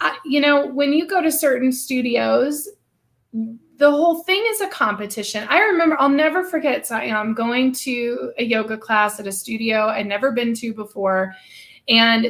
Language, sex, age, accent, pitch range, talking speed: English, female, 20-39, American, 230-295 Hz, 165 wpm